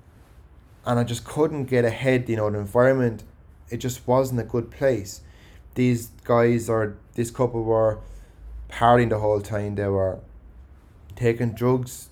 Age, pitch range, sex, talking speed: 20-39, 100-120 Hz, male, 150 wpm